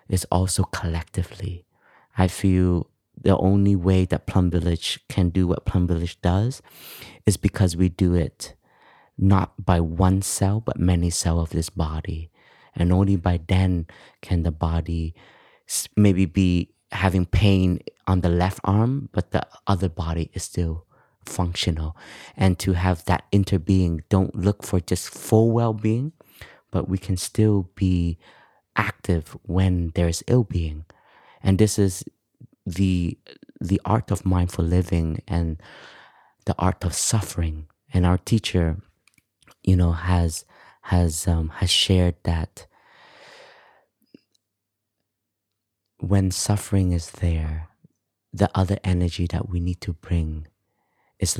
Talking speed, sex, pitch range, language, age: 130 wpm, male, 85-100 Hz, English, 30-49